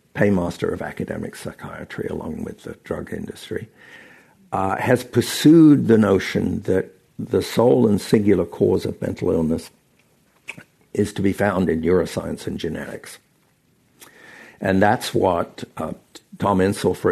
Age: 60-79